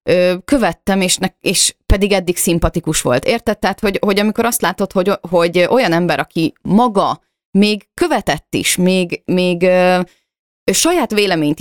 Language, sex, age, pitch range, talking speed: Hungarian, female, 30-49, 150-195 Hz, 115 wpm